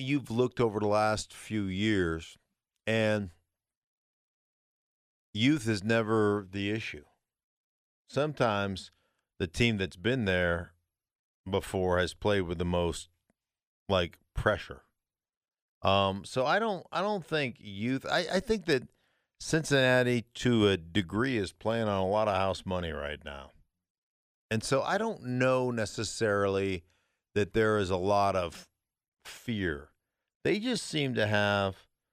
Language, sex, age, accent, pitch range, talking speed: English, male, 50-69, American, 95-125 Hz, 135 wpm